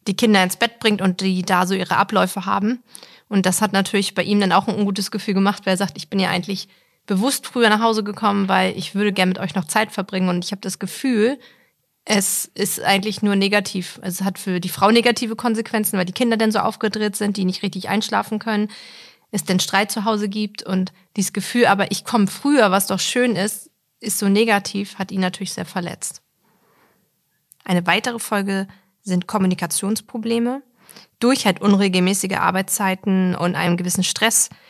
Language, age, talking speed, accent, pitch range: German, 30-49, 195 wpm, German, 185-215 Hz